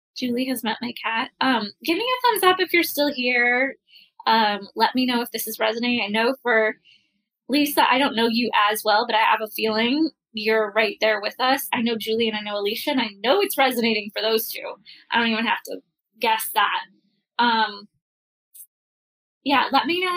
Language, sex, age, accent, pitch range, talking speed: English, female, 10-29, American, 225-280 Hz, 210 wpm